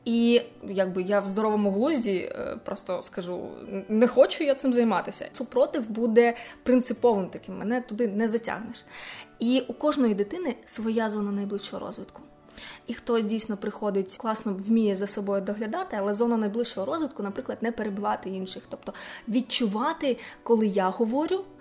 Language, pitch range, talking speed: Ukrainian, 205-245 Hz, 140 wpm